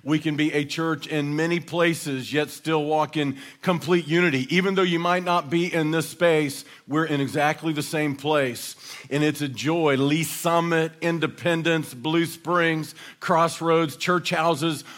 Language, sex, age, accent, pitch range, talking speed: English, male, 50-69, American, 150-175 Hz, 165 wpm